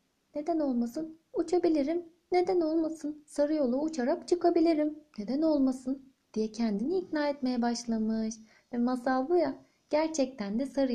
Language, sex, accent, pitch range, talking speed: Turkish, female, native, 210-295 Hz, 125 wpm